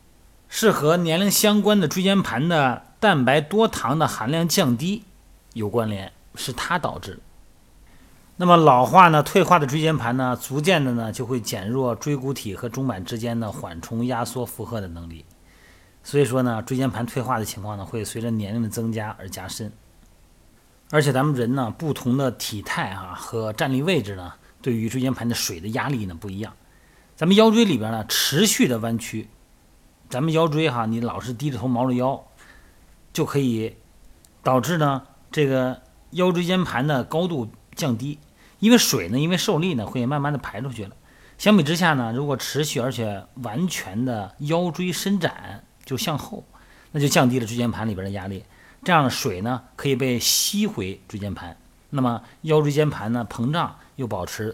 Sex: male